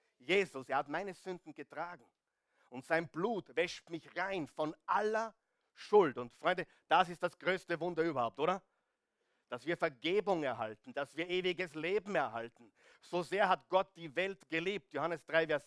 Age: 50-69